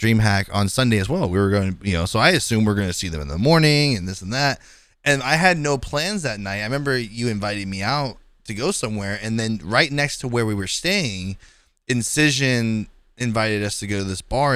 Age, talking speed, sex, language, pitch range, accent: 20-39, 245 wpm, male, English, 115-175 Hz, American